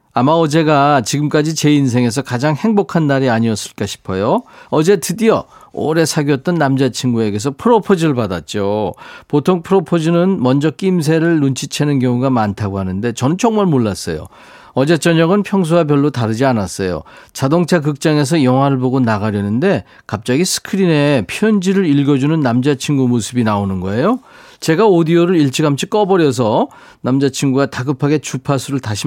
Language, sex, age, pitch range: Korean, male, 40-59, 125-170 Hz